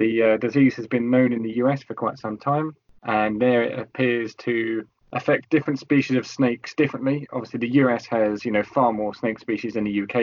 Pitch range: 110-130 Hz